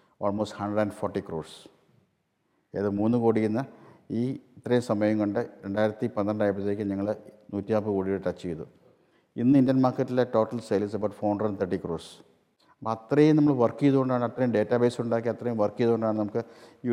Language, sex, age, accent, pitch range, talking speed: Malayalam, male, 50-69, native, 105-130 Hz, 165 wpm